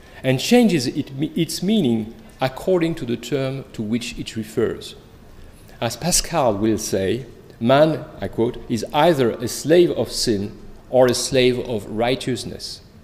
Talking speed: 140 wpm